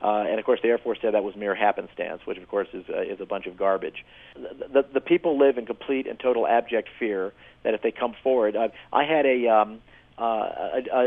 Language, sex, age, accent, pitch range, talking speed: English, male, 40-59, American, 105-130 Hz, 245 wpm